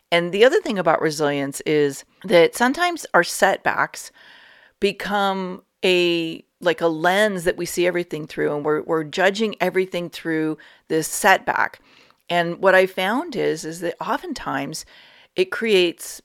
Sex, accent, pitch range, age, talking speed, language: female, American, 155-195 Hz, 40-59, 145 wpm, English